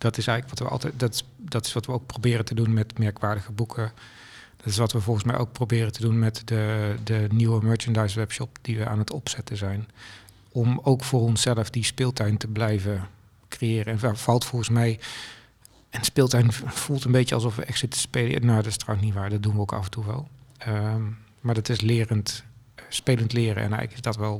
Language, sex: Dutch, male